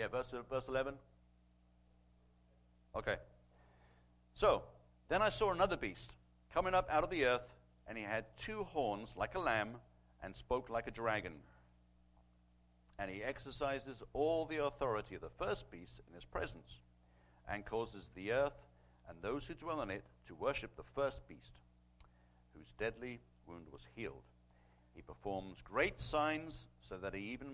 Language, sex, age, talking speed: English, male, 60-79, 155 wpm